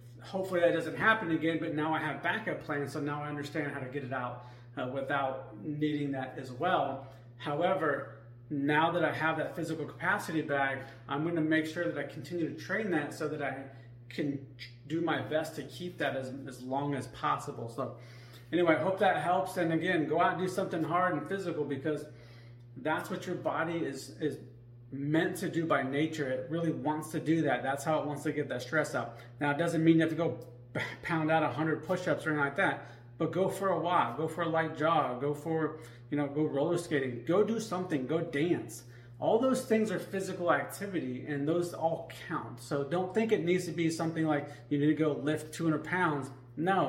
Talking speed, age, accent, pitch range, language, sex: 215 wpm, 30-49, American, 135-165 Hz, English, male